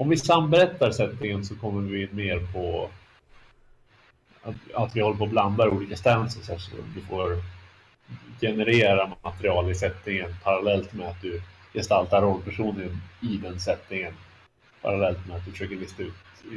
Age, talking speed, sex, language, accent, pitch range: 30-49, 150 wpm, male, Swedish, Norwegian, 95-115 Hz